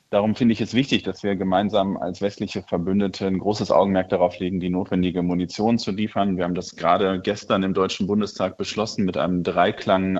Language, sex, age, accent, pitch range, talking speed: German, male, 30-49, German, 95-105 Hz, 195 wpm